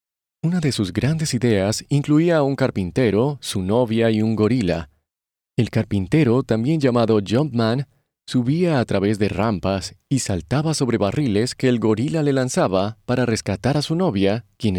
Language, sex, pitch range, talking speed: Spanish, male, 105-140 Hz, 160 wpm